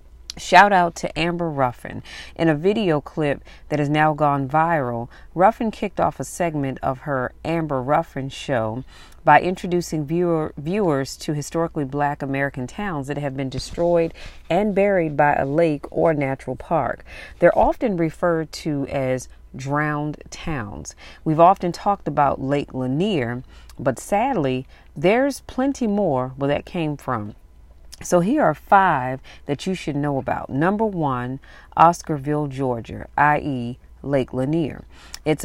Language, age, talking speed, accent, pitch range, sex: English, 40-59, 140 wpm, American, 135-175 Hz, female